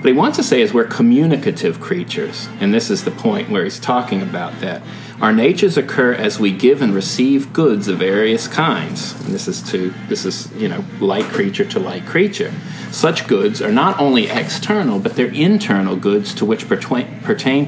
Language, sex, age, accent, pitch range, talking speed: English, male, 40-59, American, 135-215 Hz, 195 wpm